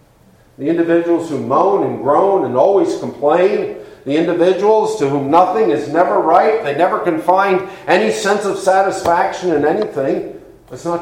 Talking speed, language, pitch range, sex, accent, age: 160 wpm, English, 170-220 Hz, male, American, 50-69